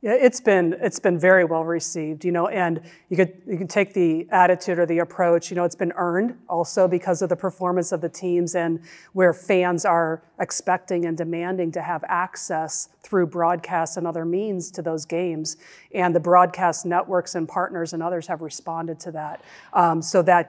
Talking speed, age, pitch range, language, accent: 195 wpm, 40-59, 165-180 Hz, English, American